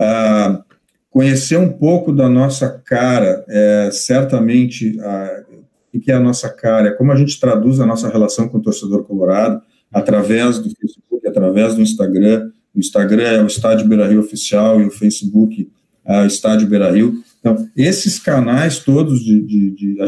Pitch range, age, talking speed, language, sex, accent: 105-135 Hz, 40-59, 170 wpm, Portuguese, male, Brazilian